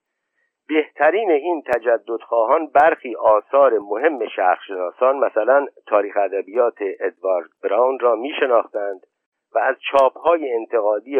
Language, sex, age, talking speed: Persian, male, 50-69, 100 wpm